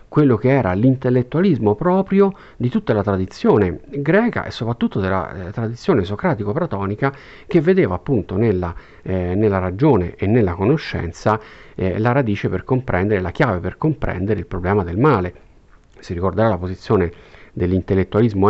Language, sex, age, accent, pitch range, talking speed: Italian, male, 50-69, native, 90-125 Hz, 135 wpm